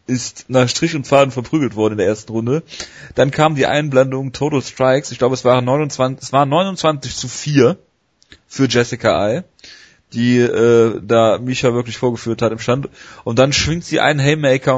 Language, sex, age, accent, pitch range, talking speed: German, male, 30-49, German, 110-130 Hz, 185 wpm